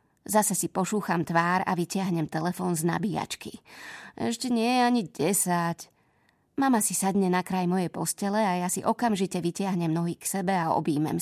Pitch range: 175-215 Hz